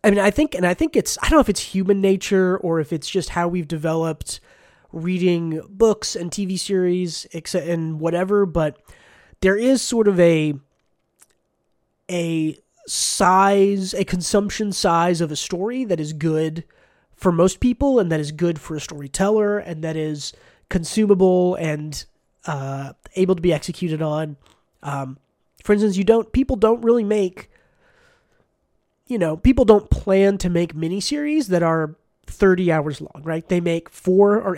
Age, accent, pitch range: 20-39, American, 155-195 Hz